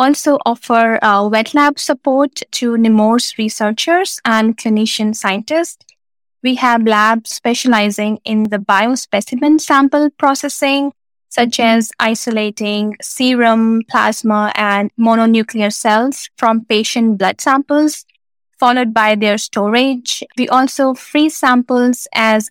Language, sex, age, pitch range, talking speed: English, female, 20-39, 220-270 Hz, 115 wpm